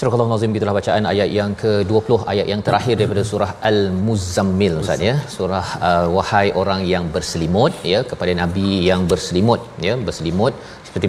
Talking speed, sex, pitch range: 170 wpm, male, 95-120 Hz